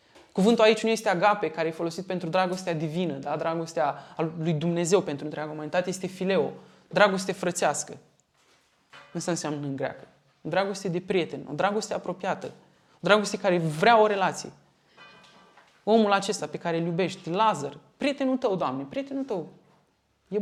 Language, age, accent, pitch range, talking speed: Romanian, 20-39, native, 165-205 Hz, 145 wpm